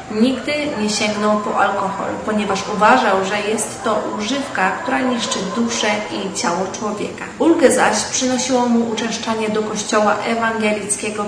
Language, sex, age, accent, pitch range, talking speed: Polish, female, 30-49, native, 205-250 Hz, 135 wpm